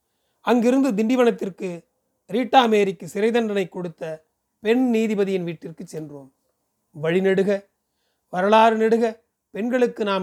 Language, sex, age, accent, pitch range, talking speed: Tamil, male, 30-49, native, 170-220 Hz, 95 wpm